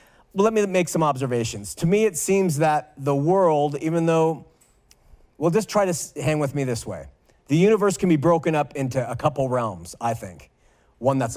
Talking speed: 195 wpm